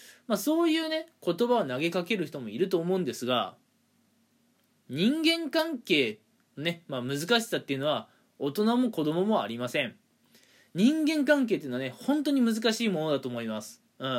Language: Japanese